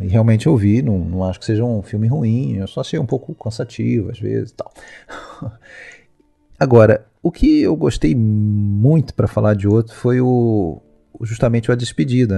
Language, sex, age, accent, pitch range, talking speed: Portuguese, male, 40-59, Brazilian, 95-115 Hz, 185 wpm